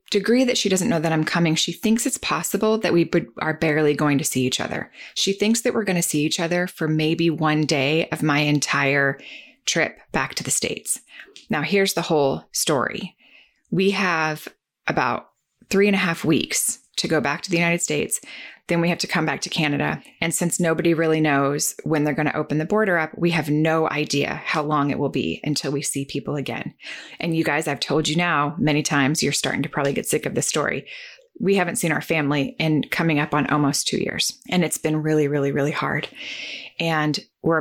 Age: 20-39